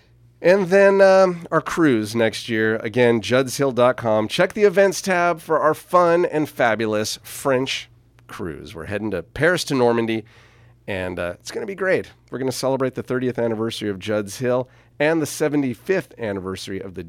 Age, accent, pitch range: 40-59, American, 100-125 Hz